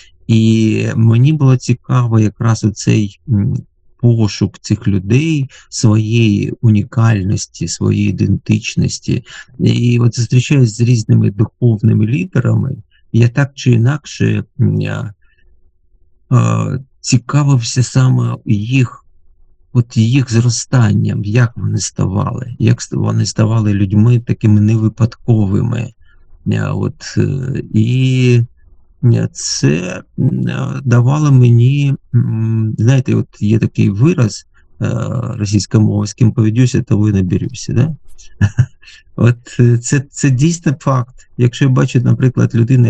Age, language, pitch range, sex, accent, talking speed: 50-69, Ukrainian, 105-125 Hz, male, native, 95 wpm